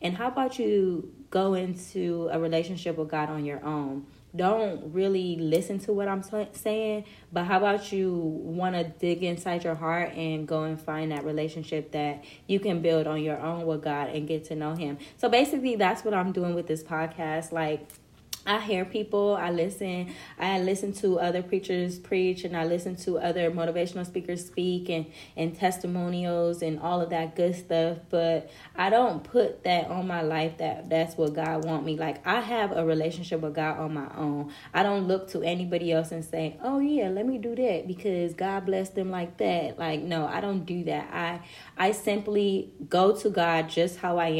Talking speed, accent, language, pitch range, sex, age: 200 wpm, American, English, 155-185 Hz, female, 10-29